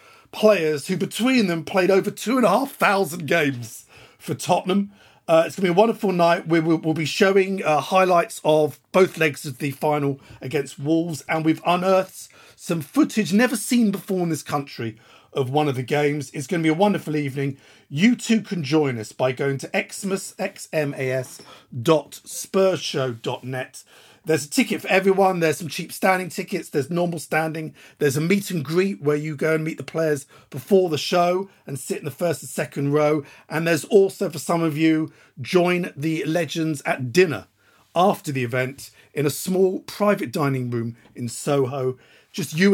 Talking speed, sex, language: 175 wpm, male, English